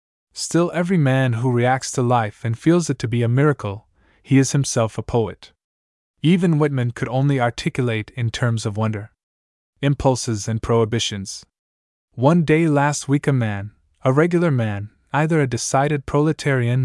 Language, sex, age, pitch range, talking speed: English, male, 20-39, 110-140 Hz, 155 wpm